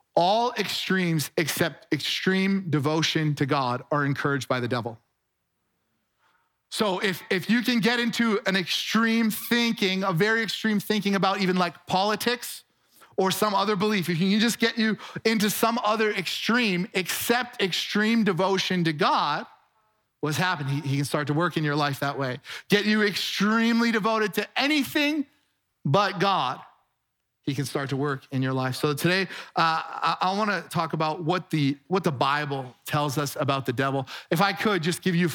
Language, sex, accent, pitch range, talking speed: English, male, American, 145-205 Hz, 175 wpm